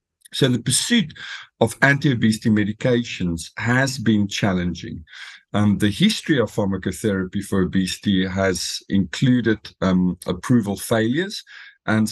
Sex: male